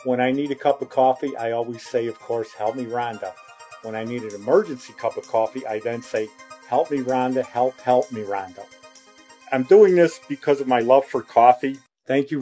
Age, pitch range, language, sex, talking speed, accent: 50-69, 110-130 Hz, English, male, 215 wpm, American